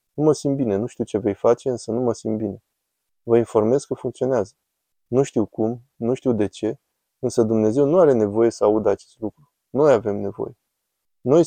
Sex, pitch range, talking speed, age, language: male, 110-130 Hz, 195 wpm, 20-39, Romanian